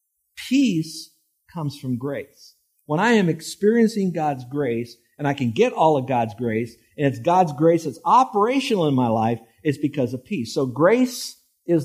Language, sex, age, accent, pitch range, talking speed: English, male, 50-69, American, 120-160 Hz, 170 wpm